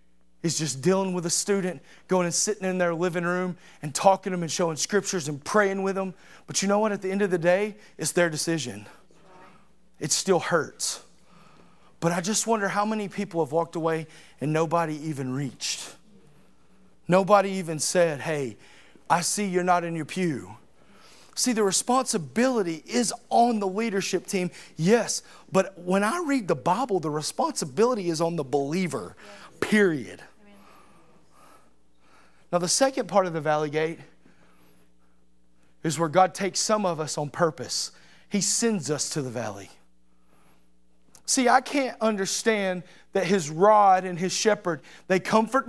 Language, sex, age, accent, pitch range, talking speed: English, male, 30-49, American, 155-215 Hz, 160 wpm